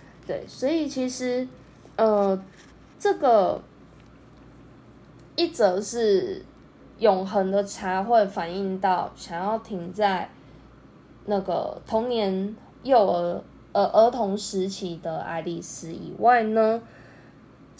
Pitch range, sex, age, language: 185-230 Hz, female, 10-29, Chinese